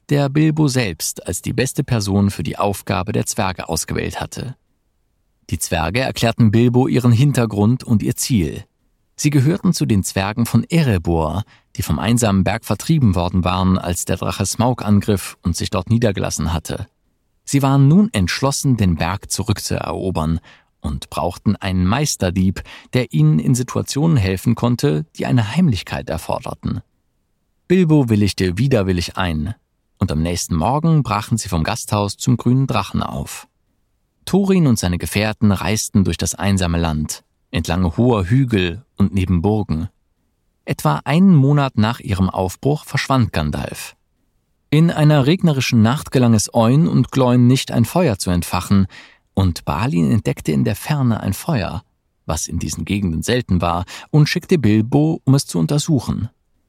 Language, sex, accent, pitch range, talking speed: German, male, German, 95-130 Hz, 150 wpm